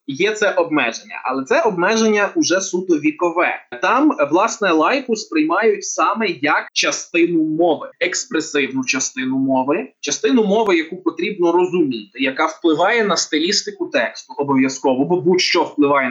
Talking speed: 125 wpm